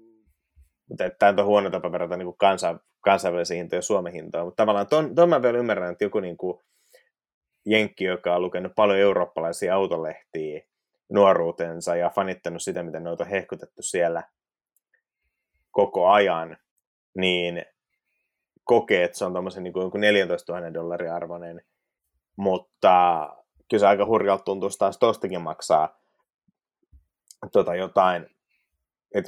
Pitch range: 85-105 Hz